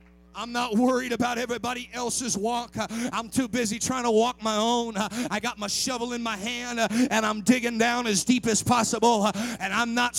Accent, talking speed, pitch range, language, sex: American, 195 wpm, 230-290 Hz, English, male